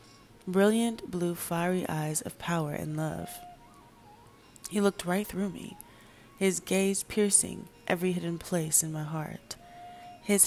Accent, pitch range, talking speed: American, 160-190 Hz, 130 wpm